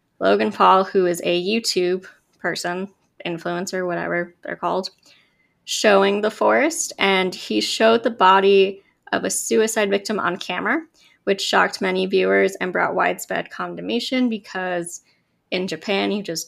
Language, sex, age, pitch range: English, female, 20-39, 175-215 Hz